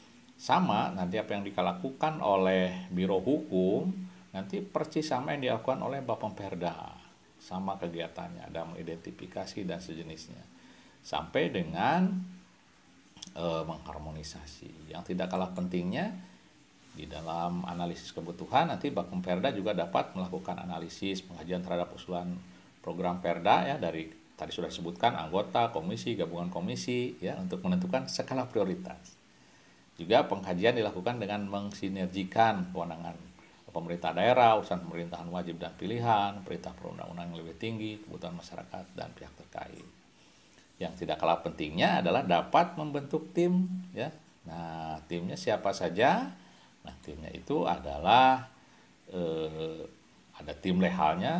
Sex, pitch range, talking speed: male, 85-110 Hz, 120 wpm